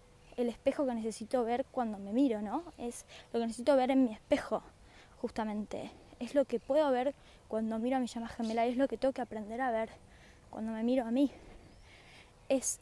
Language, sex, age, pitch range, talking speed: Spanish, female, 10-29, 225-275 Hz, 205 wpm